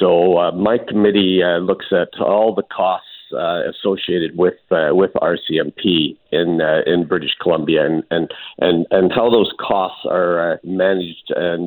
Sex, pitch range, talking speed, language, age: male, 90-100 Hz, 165 wpm, English, 50-69